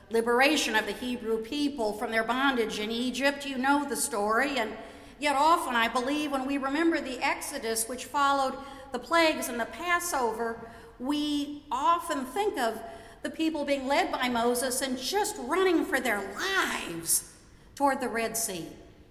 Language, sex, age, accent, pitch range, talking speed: English, female, 50-69, American, 225-300 Hz, 160 wpm